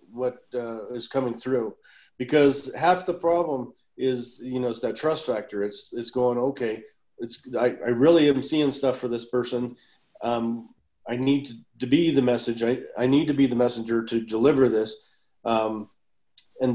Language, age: English, 40-59